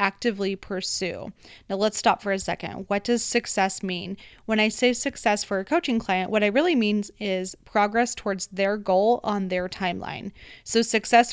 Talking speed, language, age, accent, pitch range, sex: 180 wpm, English, 20-39, American, 190-240 Hz, female